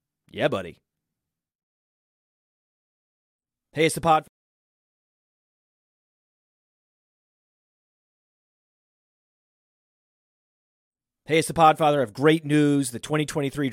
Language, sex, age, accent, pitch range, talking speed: English, male, 40-59, American, 130-165 Hz, 65 wpm